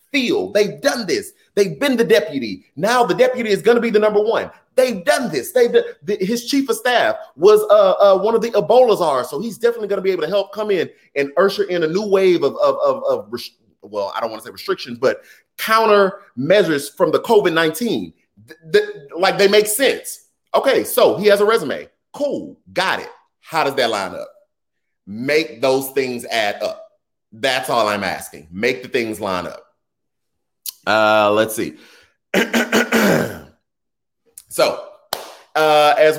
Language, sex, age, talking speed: English, male, 30-49, 185 wpm